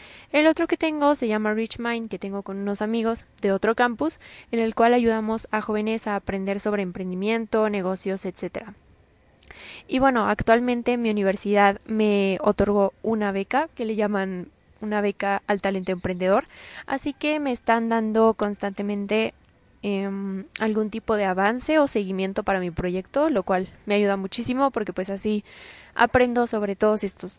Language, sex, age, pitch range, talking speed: Spanish, female, 20-39, 195-230 Hz, 160 wpm